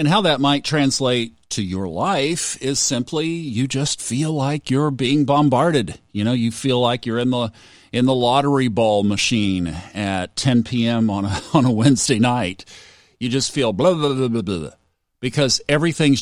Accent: American